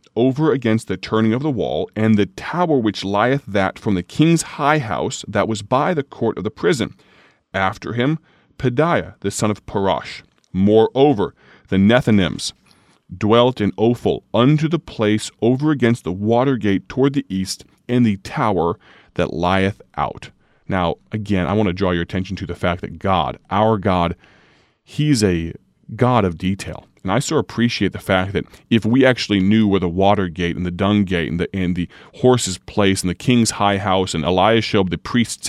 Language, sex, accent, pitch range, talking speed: English, male, American, 95-120 Hz, 185 wpm